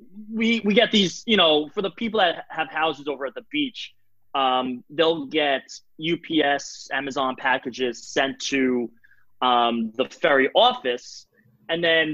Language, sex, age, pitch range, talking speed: English, male, 20-39, 130-170 Hz, 150 wpm